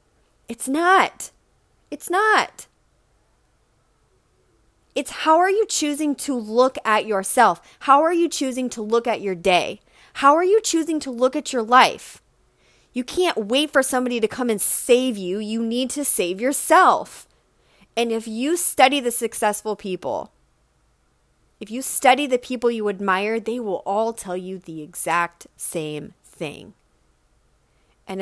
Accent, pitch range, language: American, 195-265 Hz, English